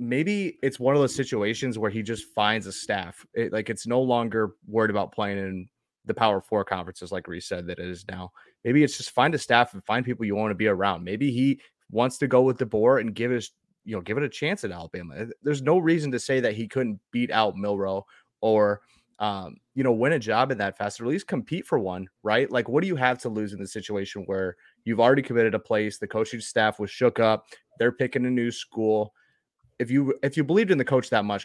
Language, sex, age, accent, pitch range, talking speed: English, male, 30-49, American, 105-130 Hz, 245 wpm